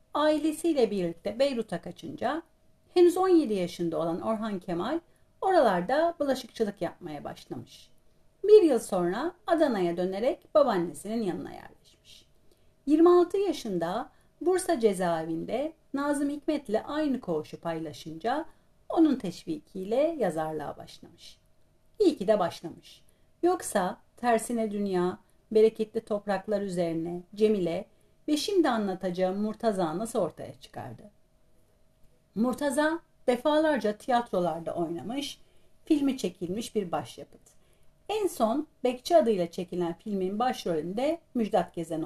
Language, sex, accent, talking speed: Turkish, female, native, 100 wpm